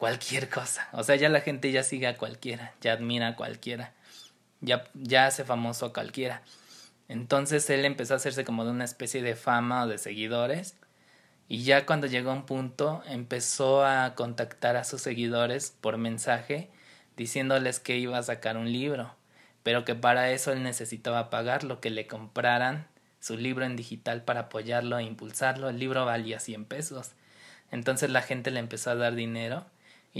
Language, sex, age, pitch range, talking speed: Spanish, male, 20-39, 115-135 Hz, 180 wpm